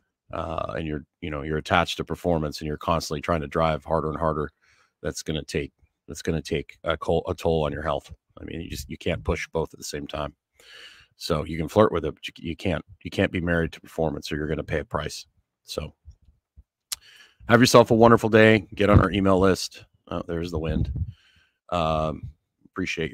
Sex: male